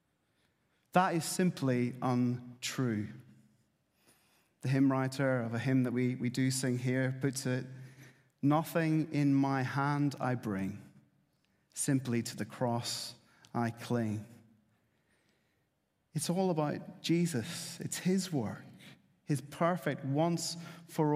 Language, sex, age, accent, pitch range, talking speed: English, male, 30-49, British, 115-160 Hz, 115 wpm